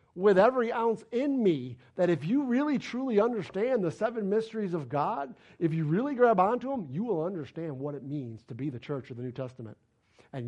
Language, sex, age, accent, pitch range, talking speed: English, male, 50-69, American, 155-215 Hz, 210 wpm